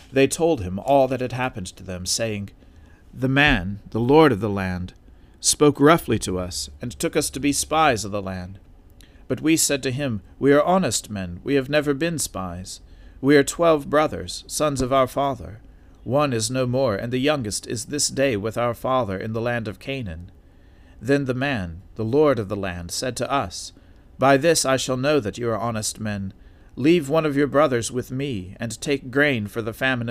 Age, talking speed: 40-59, 205 wpm